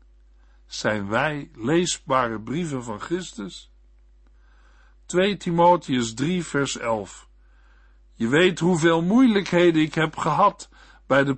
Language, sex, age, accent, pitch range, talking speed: Dutch, male, 60-79, Dutch, 125-170 Hz, 105 wpm